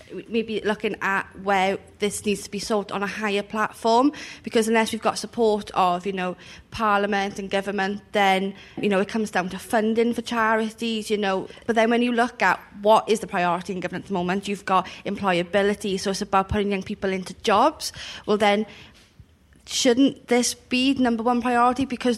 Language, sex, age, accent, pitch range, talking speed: English, female, 30-49, British, 200-230 Hz, 190 wpm